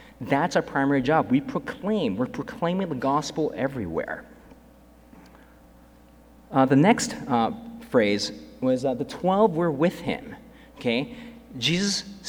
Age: 40-59